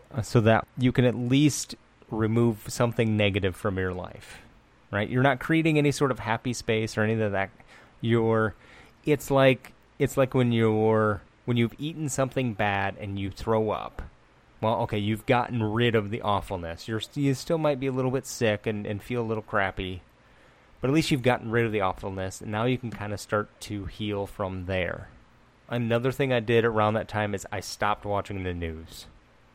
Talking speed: 195 wpm